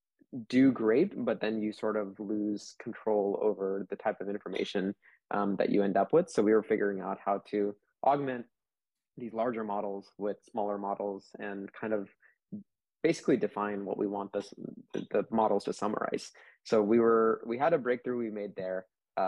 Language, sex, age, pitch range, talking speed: English, male, 20-39, 100-110 Hz, 185 wpm